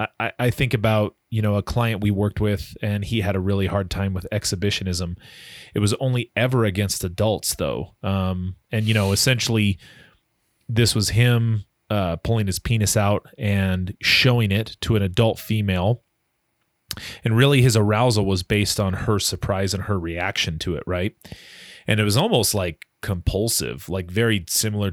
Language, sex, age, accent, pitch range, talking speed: English, male, 30-49, American, 90-110 Hz, 170 wpm